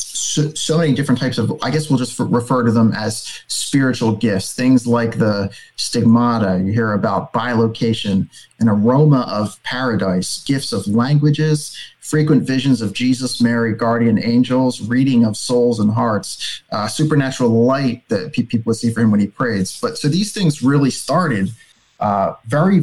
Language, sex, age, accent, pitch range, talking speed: English, male, 30-49, American, 115-135 Hz, 165 wpm